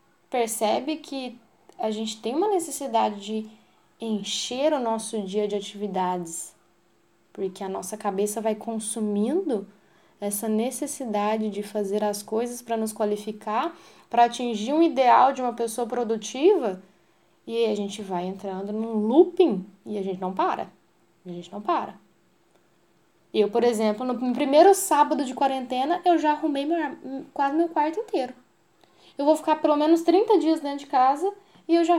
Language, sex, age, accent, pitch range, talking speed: Portuguese, female, 10-29, Brazilian, 220-310 Hz, 155 wpm